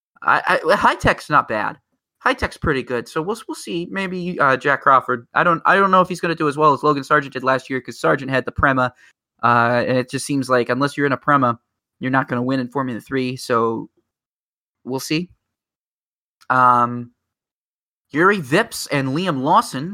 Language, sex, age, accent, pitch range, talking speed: English, male, 20-39, American, 120-145 Hz, 210 wpm